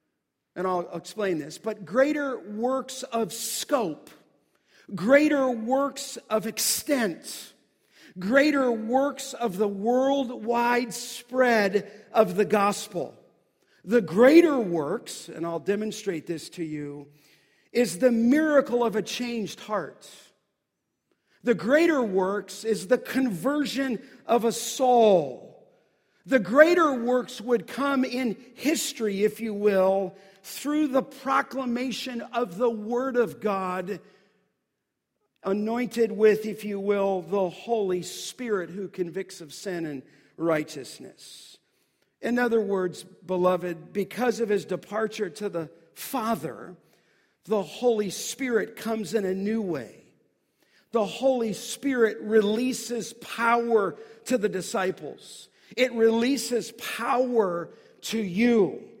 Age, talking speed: 50-69, 115 wpm